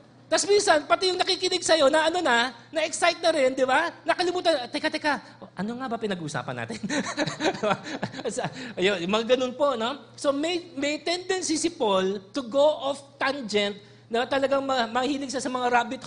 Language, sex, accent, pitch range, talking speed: English, male, Filipino, 180-255 Hz, 155 wpm